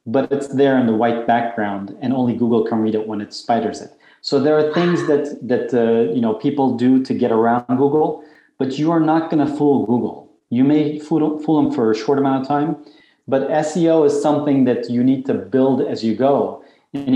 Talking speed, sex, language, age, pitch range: 225 wpm, male, English, 30-49, 115-140 Hz